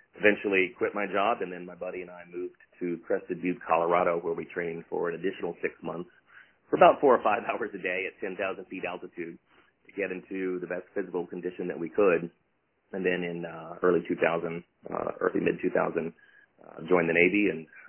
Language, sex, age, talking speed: English, male, 30-49, 200 wpm